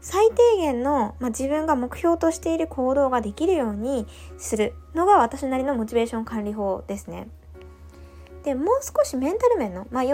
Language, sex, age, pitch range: Japanese, female, 20-39, 200-320 Hz